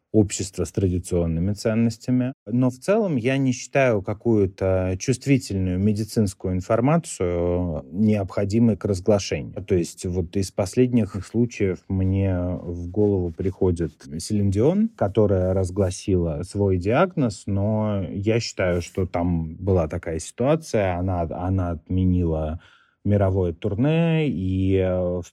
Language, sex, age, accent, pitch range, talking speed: Russian, male, 30-49, native, 90-110 Hz, 110 wpm